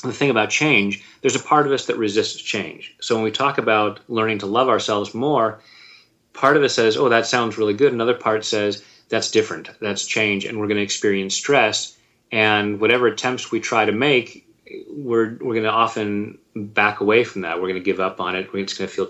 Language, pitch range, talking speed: English, 100-130 Hz, 225 wpm